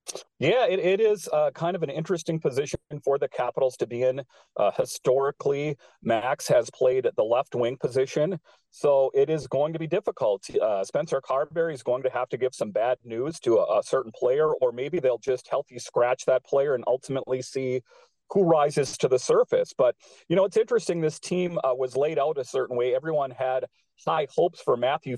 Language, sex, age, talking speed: English, male, 40-59, 205 wpm